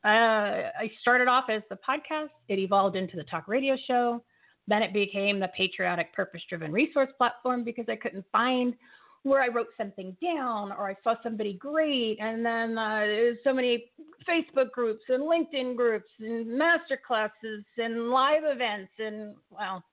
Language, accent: English, American